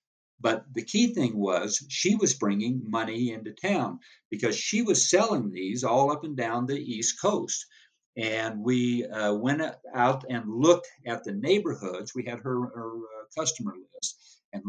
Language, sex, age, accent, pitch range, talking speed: English, male, 60-79, American, 115-140 Hz, 170 wpm